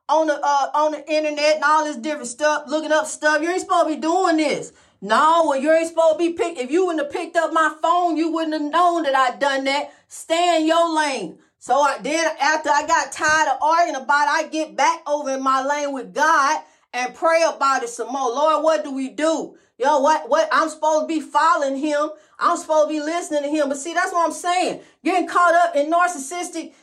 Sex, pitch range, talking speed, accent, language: female, 305-360 Hz, 240 wpm, American, English